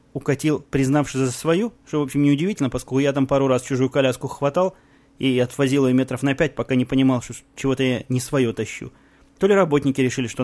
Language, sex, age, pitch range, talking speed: Russian, male, 20-39, 125-145 Hz, 205 wpm